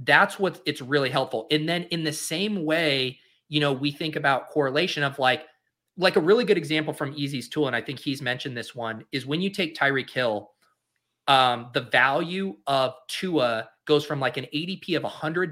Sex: male